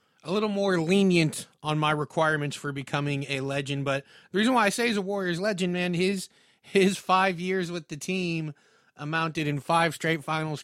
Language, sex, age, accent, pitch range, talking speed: English, male, 30-49, American, 140-165 Hz, 190 wpm